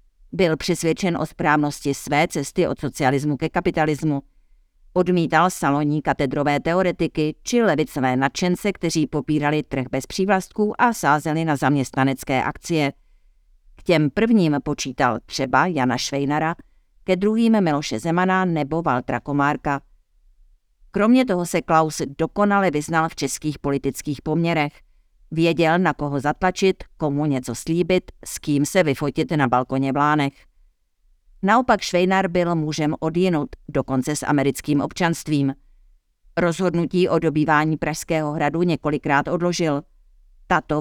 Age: 50-69